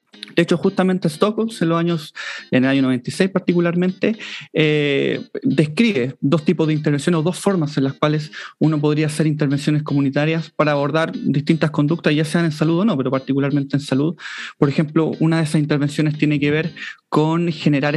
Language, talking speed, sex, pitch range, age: Spanish, 170 wpm, male, 140-175 Hz, 30-49